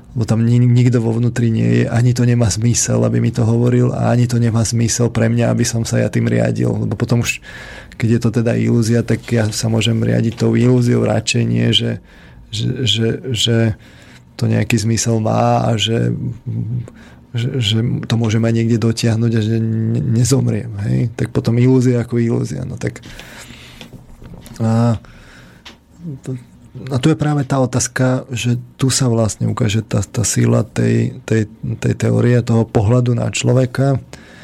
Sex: male